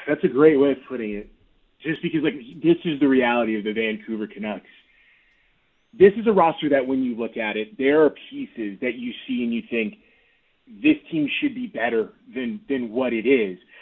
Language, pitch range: English, 130-165 Hz